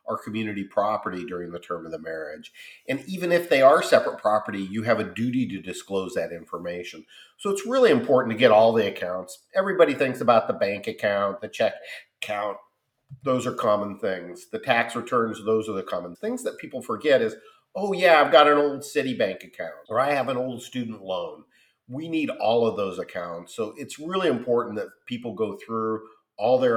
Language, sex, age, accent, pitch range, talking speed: English, male, 50-69, American, 105-130 Hz, 200 wpm